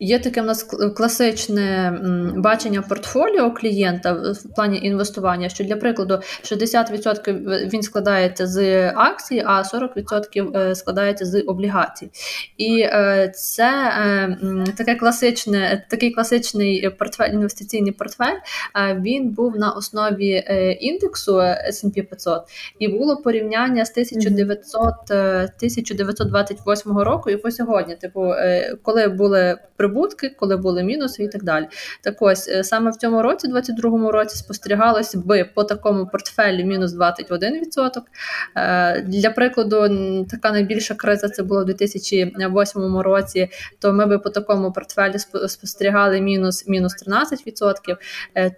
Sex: female